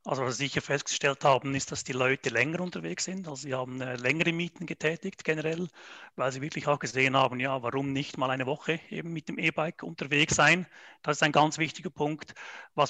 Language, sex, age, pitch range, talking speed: German, male, 40-59, 135-155 Hz, 215 wpm